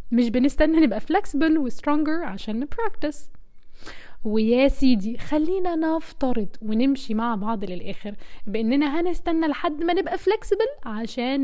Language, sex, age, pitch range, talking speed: Arabic, female, 10-29, 235-320 Hz, 120 wpm